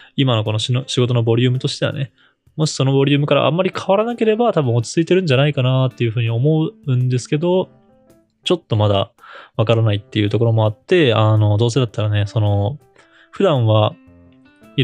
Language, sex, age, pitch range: Japanese, male, 20-39, 110-130 Hz